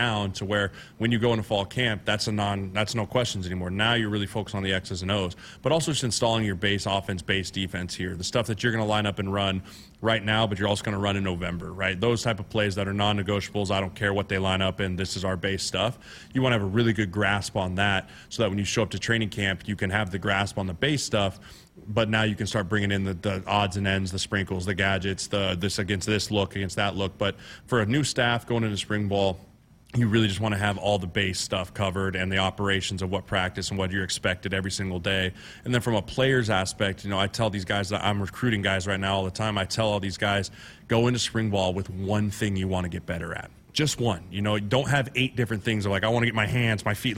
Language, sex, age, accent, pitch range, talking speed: English, male, 20-39, American, 95-110 Hz, 275 wpm